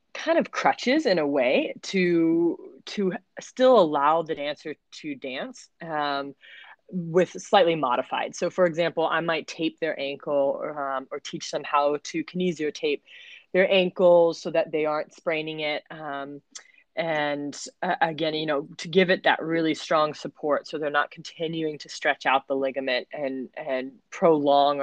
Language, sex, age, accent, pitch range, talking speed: English, female, 20-39, American, 145-180 Hz, 160 wpm